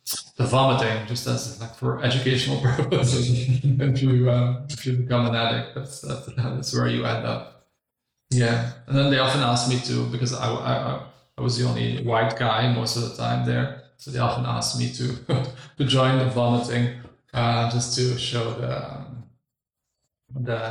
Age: 20-39